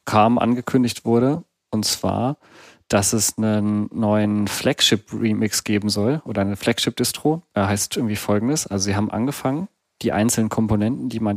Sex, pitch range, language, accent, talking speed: male, 105-115 Hz, German, German, 150 wpm